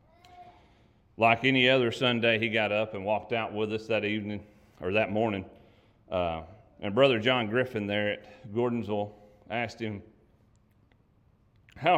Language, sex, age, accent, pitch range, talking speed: English, male, 40-59, American, 100-120 Hz, 140 wpm